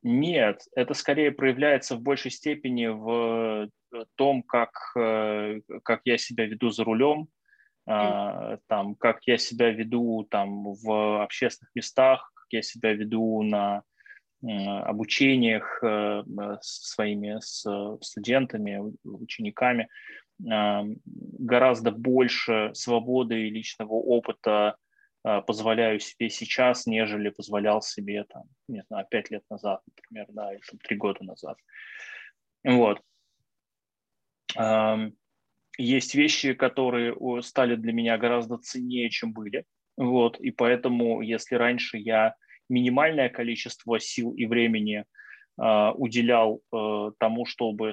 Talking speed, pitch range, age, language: 105 wpm, 110-125 Hz, 20-39, Russian